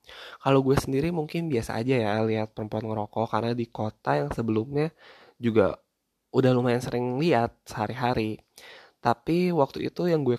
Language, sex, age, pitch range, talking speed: Indonesian, male, 20-39, 110-135 Hz, 150 wpm